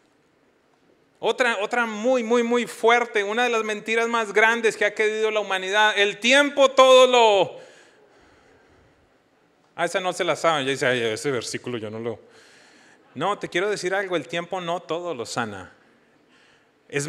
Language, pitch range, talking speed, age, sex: English, 150-215 Hz, 155 wpm, 30-49, male